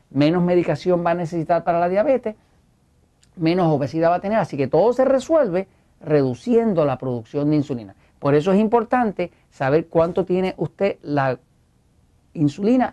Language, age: Spanish, 50-69